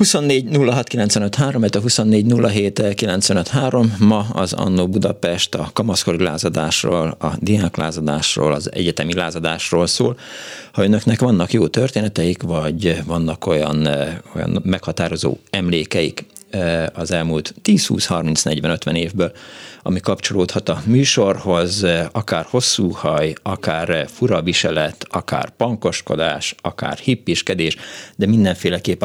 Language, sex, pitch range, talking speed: Hungarian, male, 85-115 Hz, 100 wpm